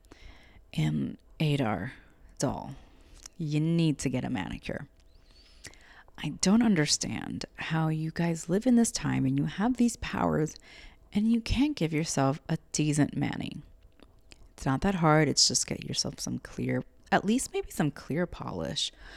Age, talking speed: 30-49, 150 wpm